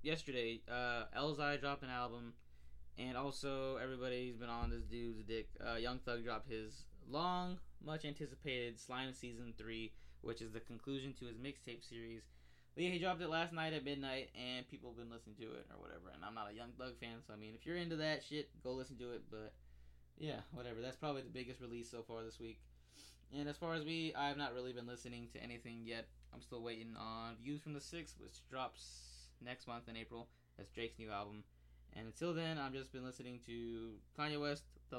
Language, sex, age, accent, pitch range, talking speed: English, male, 20-39, American, 115-140 Hz, 215 wpm